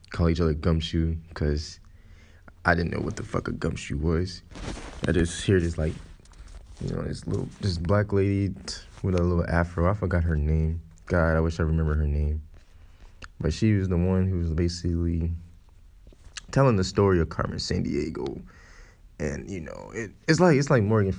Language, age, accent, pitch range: English, 20-39, American, 85-100 Hz